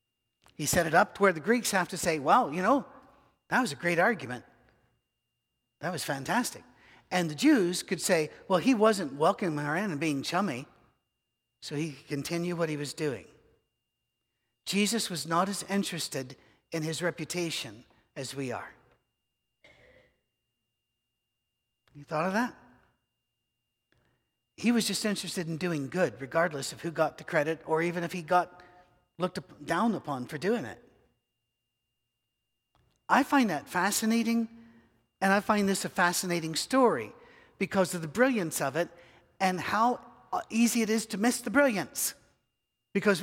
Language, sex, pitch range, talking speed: English, male, 150-215 Hz, 155 wpm